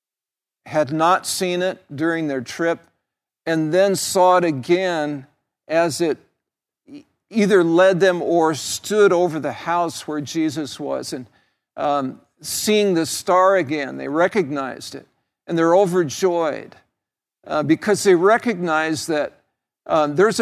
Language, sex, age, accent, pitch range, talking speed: English, male, 50-69, American, 145-185 Hz, 130 wpm